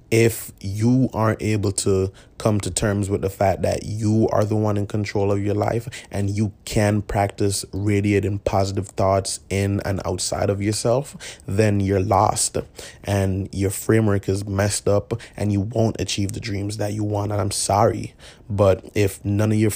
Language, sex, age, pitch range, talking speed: English, male, 20-39, 100-110 Hz, 180 wpm